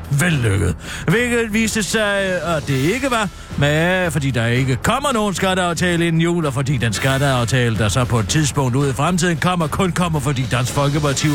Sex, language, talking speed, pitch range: male, Danish, 185 wpm, 130-180 Hz